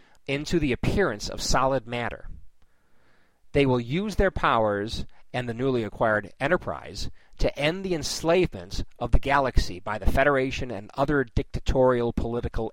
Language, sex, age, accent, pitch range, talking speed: English, male, 40-59, American, 100-140 Hz, 140 wpm